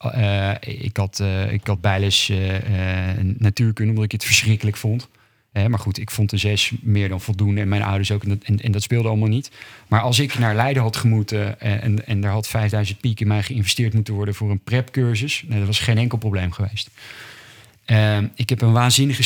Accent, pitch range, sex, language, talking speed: Dutch, 105-125 Hz, male, Dutch, 220 wpm